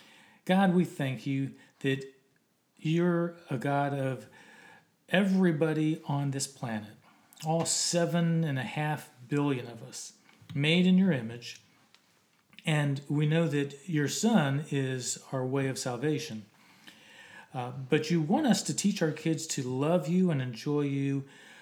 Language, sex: English, male